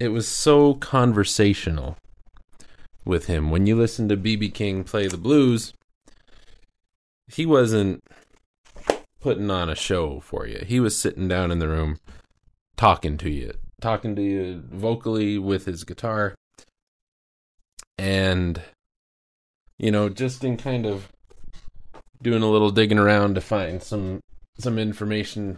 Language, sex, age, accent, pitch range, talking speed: English, male, 20-39, American, 80-110 Hz, 135 wpm